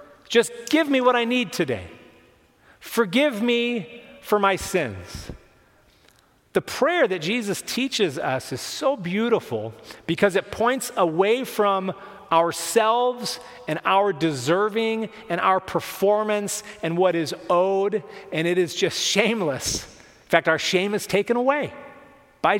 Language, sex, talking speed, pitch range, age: English, male, 135 wpm, 150-235 Hz, 40-59